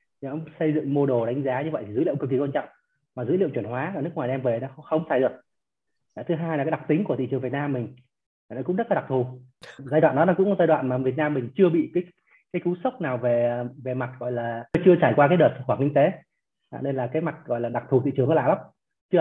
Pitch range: 130-165 Hz